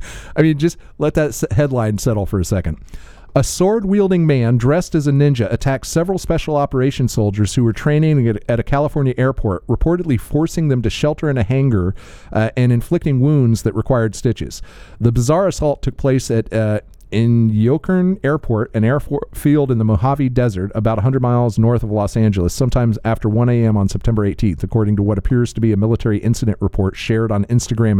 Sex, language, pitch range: male, English, 105-140 Hz